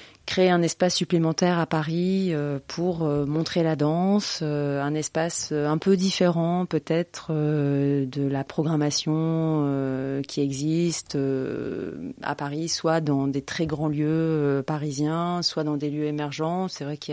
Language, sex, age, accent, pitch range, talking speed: French, female, 30-49, French, 145-165 Hz, 135 wpm